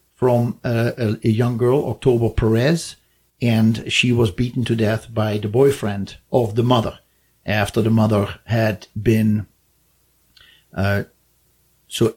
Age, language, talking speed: 50-69, English, 130 wpm